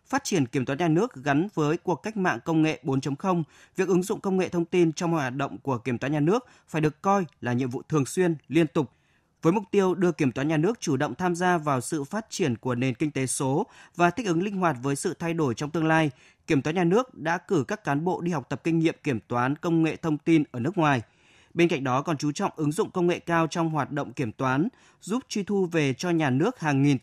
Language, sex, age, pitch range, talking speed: Vietnamese, male, 20-39, 140-175 Hz, 265 wpm